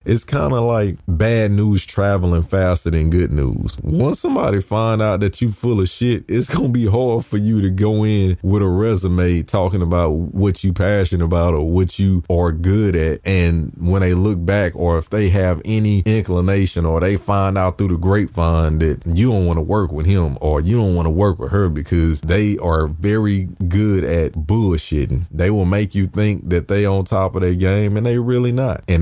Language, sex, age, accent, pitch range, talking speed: English, male, 30-49, American, 85-105 Hz, 215 wpm